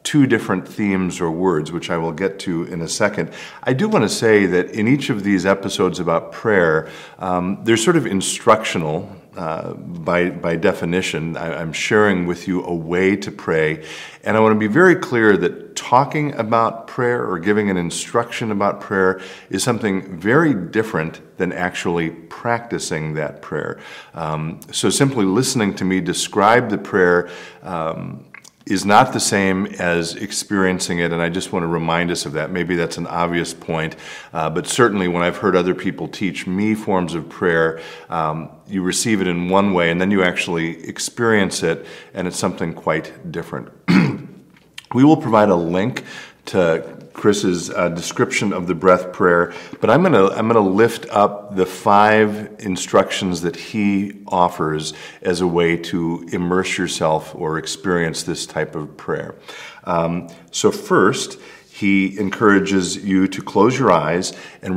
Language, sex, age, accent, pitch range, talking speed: English, male, 50-69, American, 85-100 Hz, 165 wpm